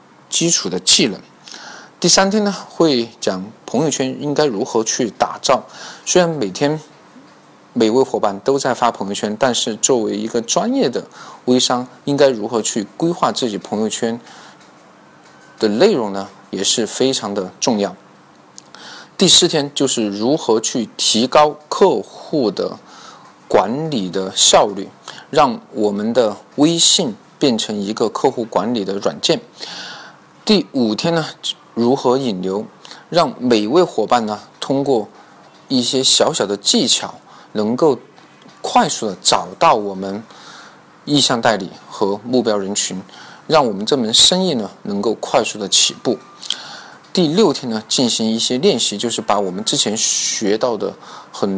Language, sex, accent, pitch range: Chinese, male, native, 105-165 Hz